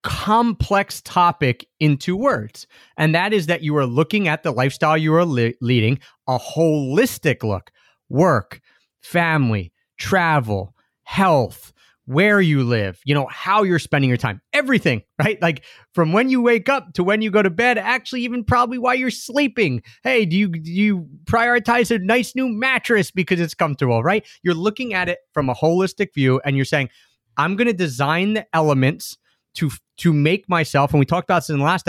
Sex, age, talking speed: male, 30-49, 185 wpm